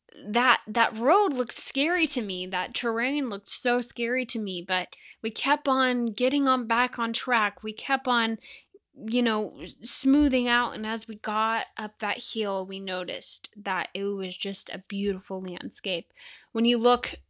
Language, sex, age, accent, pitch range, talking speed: English, female, 10-29, American, 195-240 Hz, 170 wpm